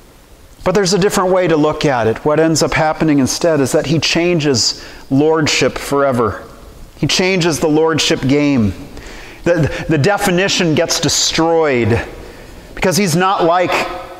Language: English